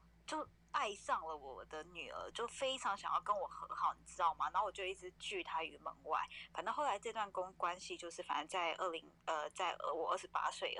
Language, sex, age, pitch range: Chinese, female, 20-39, 165-200 Hz